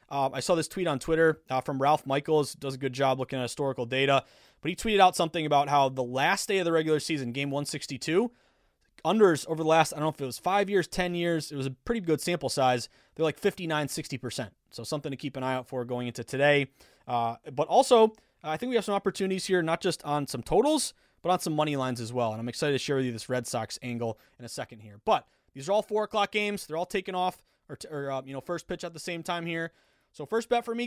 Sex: male